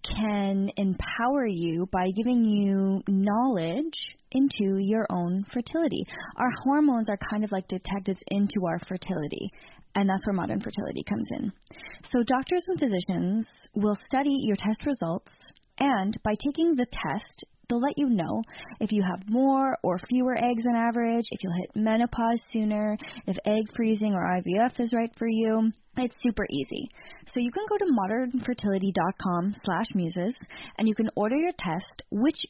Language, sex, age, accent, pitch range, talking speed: English, female, 10-29, American, 195-245 Hz, 160 wpm